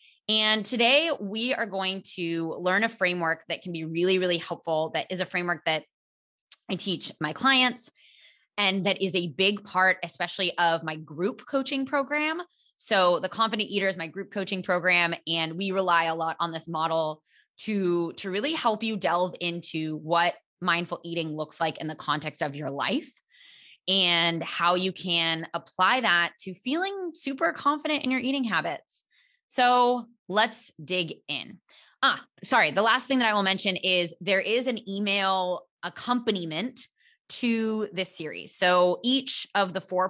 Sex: female